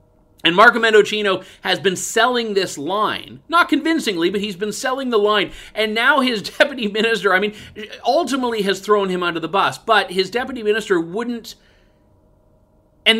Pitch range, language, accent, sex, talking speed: 150-215 Hz, English, American, male, 165 wpm